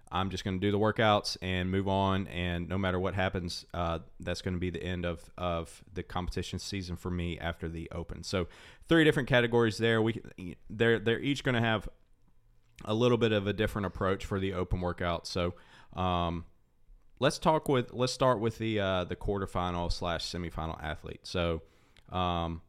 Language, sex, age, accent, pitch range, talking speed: English, male, 30-49, American, 90-105 Hz, 190 wpm